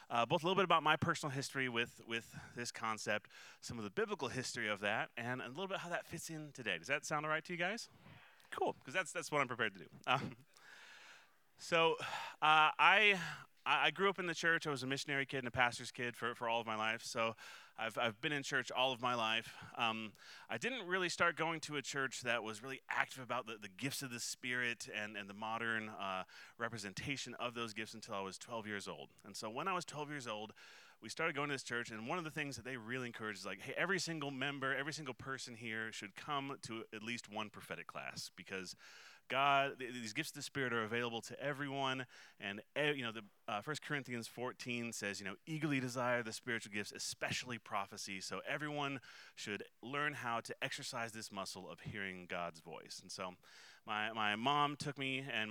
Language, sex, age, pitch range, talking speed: English, male, 30-49, 110-145 Hz, 225 wpm